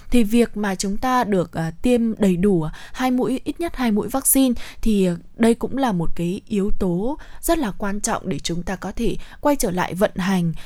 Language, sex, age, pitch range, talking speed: Vietnamese, female, 20-39, 180-245 Hz, 220 wpm